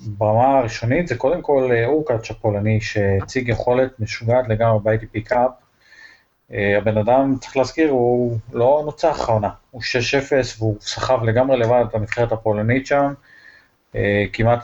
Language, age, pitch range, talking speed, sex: Hebrew, 30-49, 110-125 Hz, 130 wpm, male